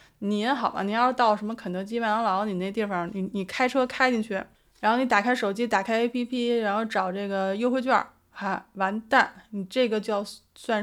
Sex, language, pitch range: female, Chinese, 195-250 Hz